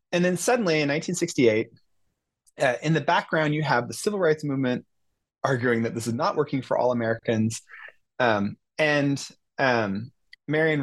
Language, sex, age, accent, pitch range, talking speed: English, male, 30-49, American, 115-150 Hz, 155 wpm